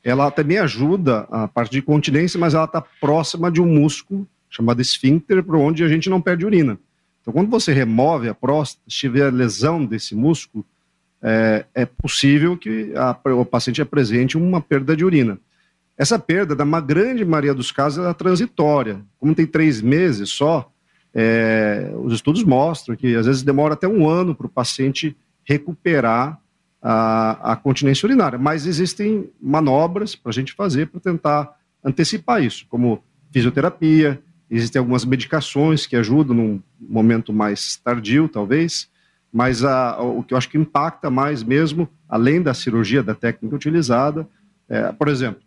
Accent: Brazilian